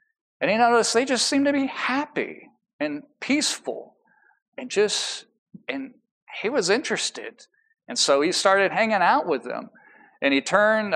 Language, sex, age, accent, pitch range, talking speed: English, male, 40-59, American, 180-285 Hz, 155 wpm